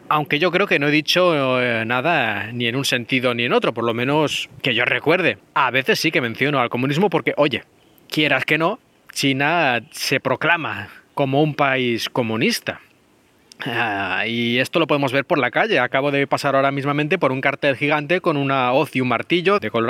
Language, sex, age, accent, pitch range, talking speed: Spanish, male, 20-39, Spanish, 115-150 Hz, 200 wpm